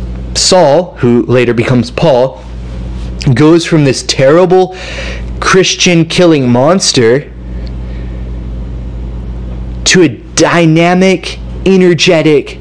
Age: 20-39